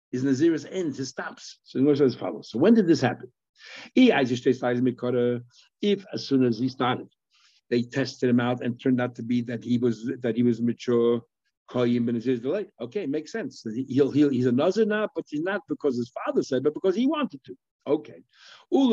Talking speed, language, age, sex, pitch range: 180 wpm, English, 60-79, male, 125-170 Hz